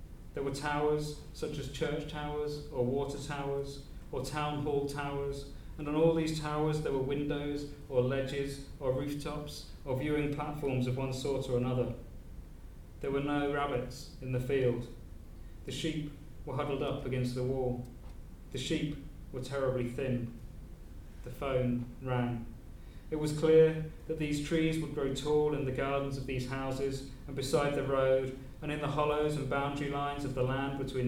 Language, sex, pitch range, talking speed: English, male, 130-150 Hz, 170 wpm